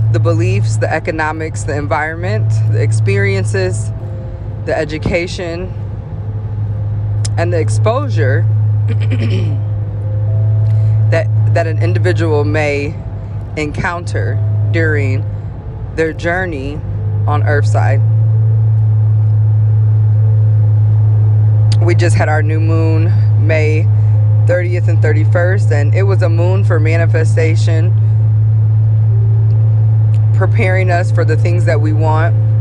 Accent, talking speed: American, 90 wpm